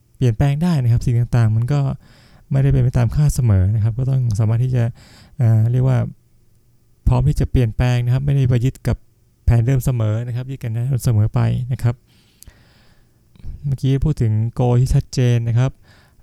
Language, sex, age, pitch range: Thai, male, 20-39, 115-135 Hz